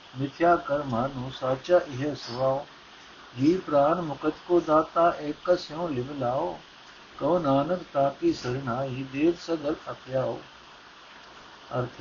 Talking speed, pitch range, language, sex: 115 wpm, 130-155 Hz, Punjabi, male